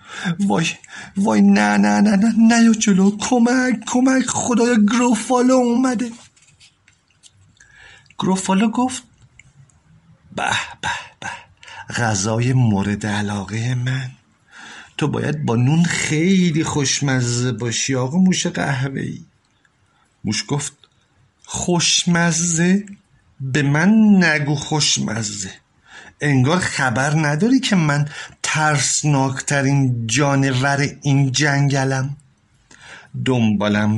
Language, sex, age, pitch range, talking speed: Persian, male, 50-69, 120-190 Hz, 90 wpm